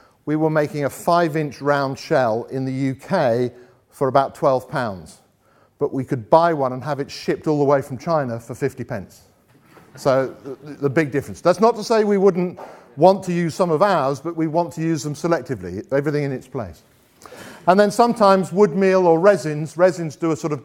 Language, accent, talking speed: English, British, 205 wpm